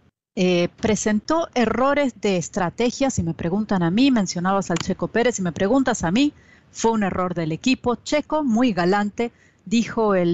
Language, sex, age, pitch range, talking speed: Spanish, female, 40-59, 180-250 Hz, 175 wpm